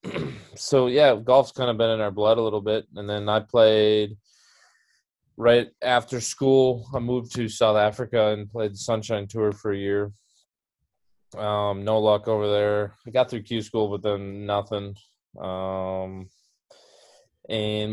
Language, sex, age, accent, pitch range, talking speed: English, male, 20-39, American, 105-120 Hz, 155 wpm